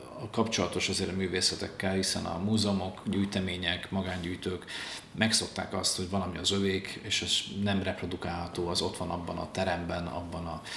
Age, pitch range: 40-59, 90-105 Hz